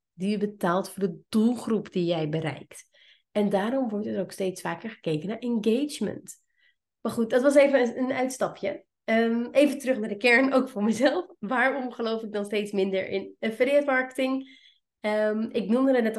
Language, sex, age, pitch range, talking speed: Dutch, female, 30-49, 200-255 Hz, 180 wpm